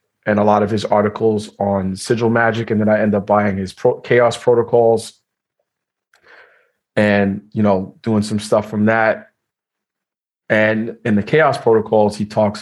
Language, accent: English, American